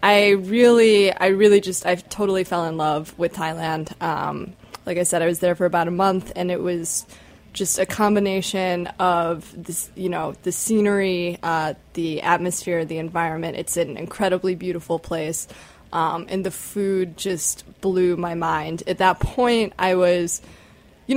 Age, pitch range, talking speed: 20-39, 165-190 Hz, 165 wpm